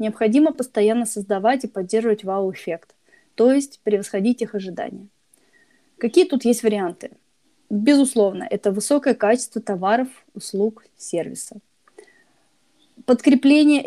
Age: 20-39